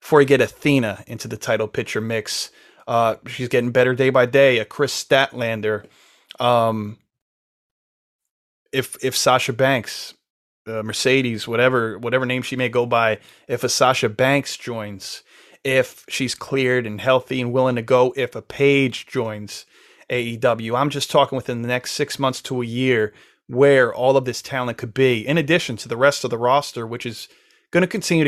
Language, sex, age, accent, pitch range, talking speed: English, male, 30-49, American, 120-140 Hz, 175 wpm